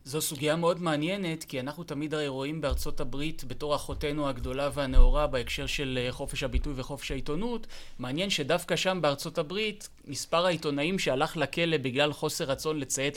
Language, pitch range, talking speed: Hebrew, 140-165 Hz, 155 wpm